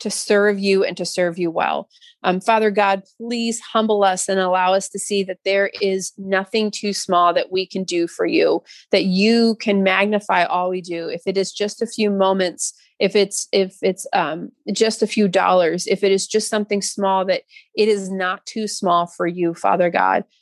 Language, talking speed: English, 205 wpm